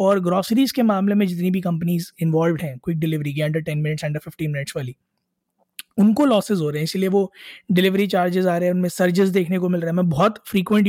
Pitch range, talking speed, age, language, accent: 180-210 Hz, 230 wpm, 20-39, Hindi, native